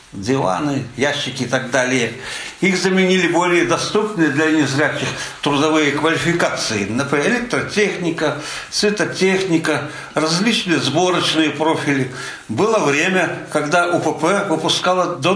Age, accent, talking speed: 60-79, native, 100 wpm